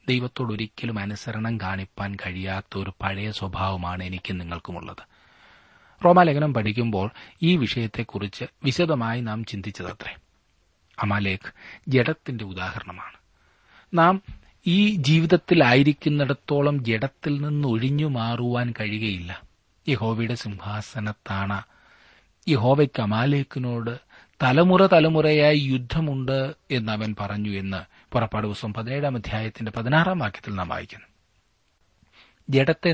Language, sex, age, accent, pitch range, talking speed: Malayalam, male, 30-49, native, 100-145 Hz, 85 wpm